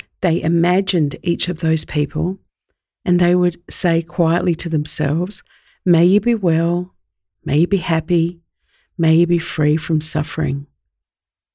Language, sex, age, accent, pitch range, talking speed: English, female, 50-69, Australian, 155-185 Hz, 140 wpm